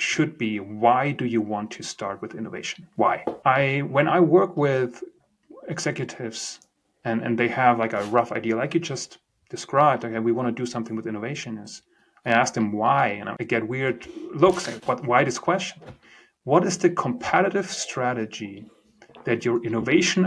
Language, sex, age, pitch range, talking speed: English, male, 30-49, 115-165 Hz, 180 wpm